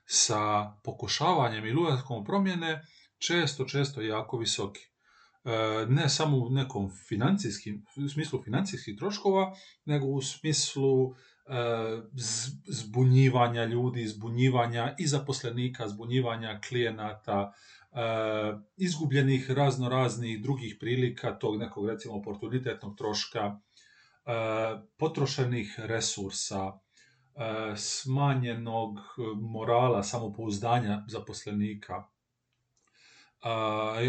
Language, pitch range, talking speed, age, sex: Croatian, 110-135 Hz, 80 wpm, 40-59, male